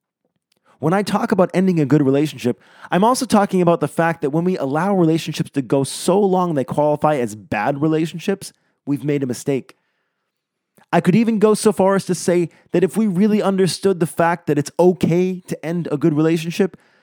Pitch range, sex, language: 140-185 Hz, male, English